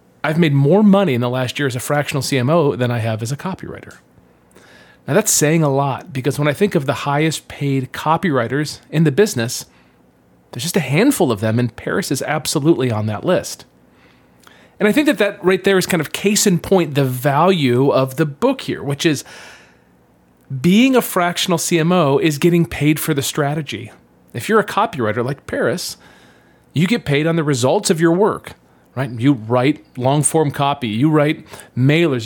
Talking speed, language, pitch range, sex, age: 190 wpm, English, 125-170 Hz, male, 40-59